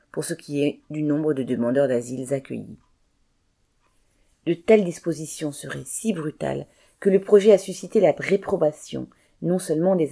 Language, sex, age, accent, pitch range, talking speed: French, female, 40-59, French, 140-175 Hz, 155 wpm